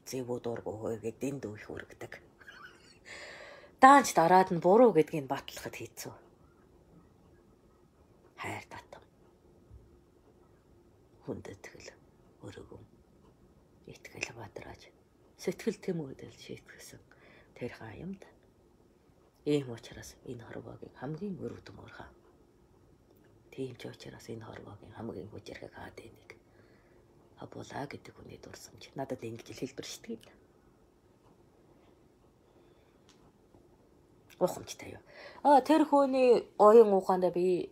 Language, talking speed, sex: English, 100 wpm, female